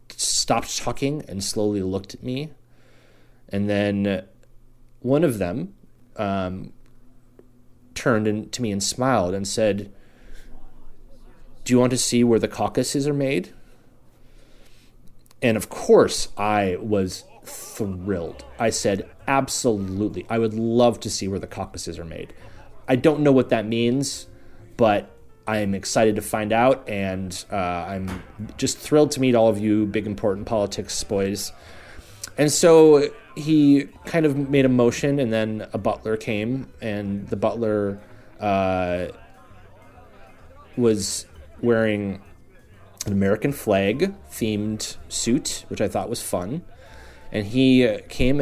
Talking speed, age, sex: 130 wpm, 30-49, male